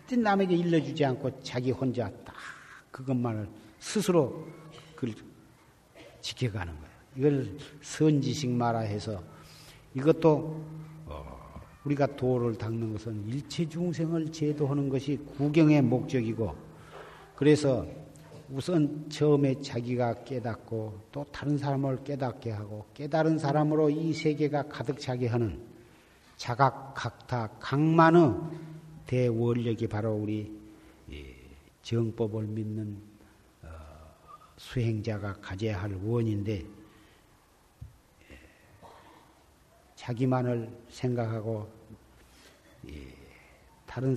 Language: Korean